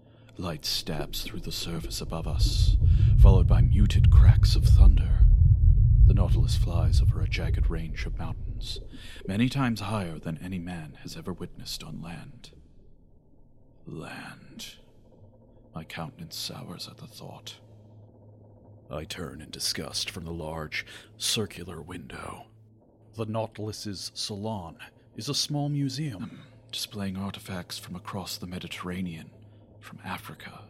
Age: 40-59